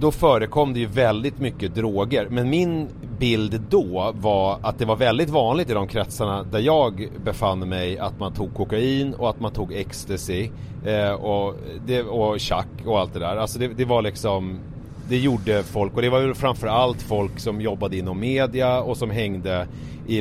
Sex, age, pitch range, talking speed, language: male, 30-49, 95-125 Hz, 185 wpm, Swedish